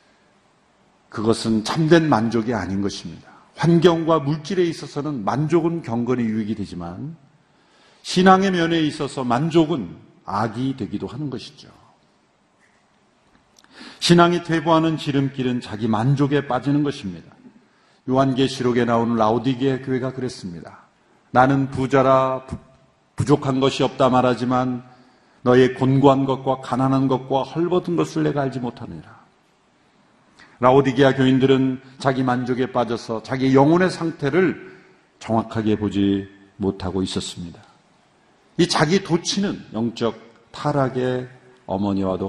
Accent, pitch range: native, 115-150 Hz